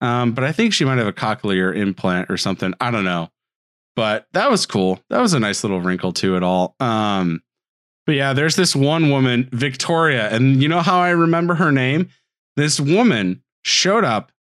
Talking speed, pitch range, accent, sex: 200 wpm, 115-155 Hz, American, male